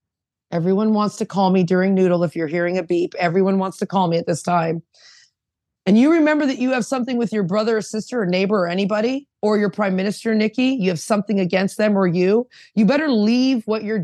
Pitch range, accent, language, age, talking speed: 185-230 Hz, American, English, 30-49, 225 wpm